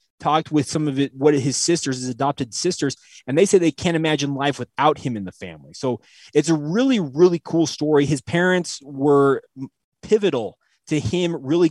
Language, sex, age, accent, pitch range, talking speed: English, male, 20-39, American, 130-160 Hz, 185 wpm